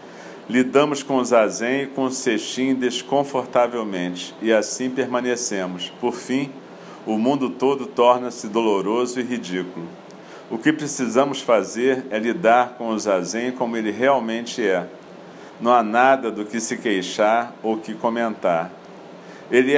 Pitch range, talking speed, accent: 110-130 Hz, 135 wpm, Brazilian